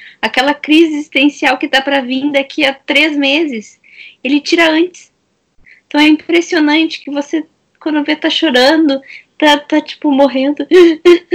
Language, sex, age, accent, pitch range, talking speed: Portuguese, female, 10-29, Brazilian, 180-280 Hz, 145 wpm